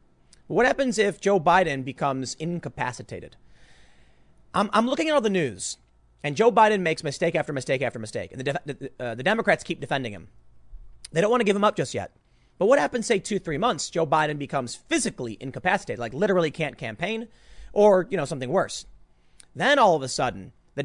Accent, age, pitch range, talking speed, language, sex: American, 40-59, 130-180 Hz, 200 wpm, English, male